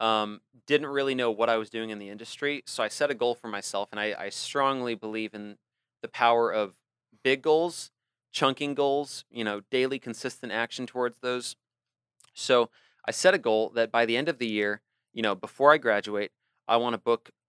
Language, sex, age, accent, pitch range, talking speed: English, male, 30-49, American, 110-135 Hz, 200 wpm